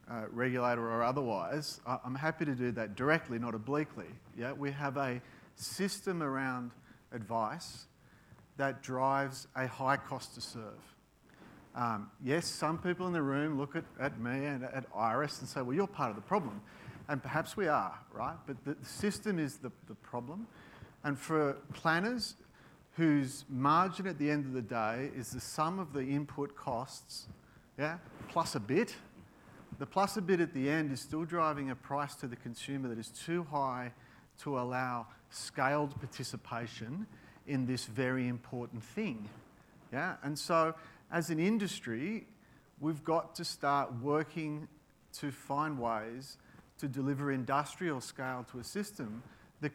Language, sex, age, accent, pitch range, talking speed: English, male, 40-59, Australian, 125-150 Hz, 160 wpm